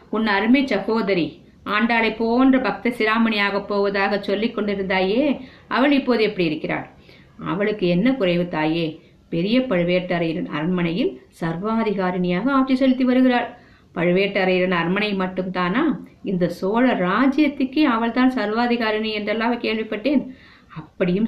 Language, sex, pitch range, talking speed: Tamil, female, 185-245 Hz, 70 wpm